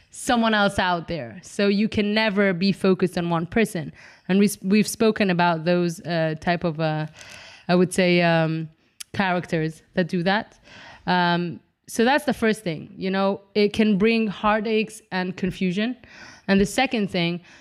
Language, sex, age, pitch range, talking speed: English, female, 20-39, 180-230 Hz, 165 wpm